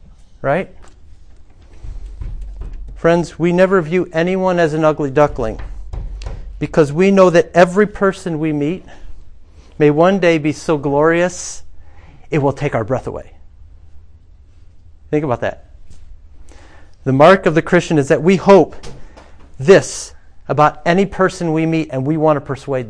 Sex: male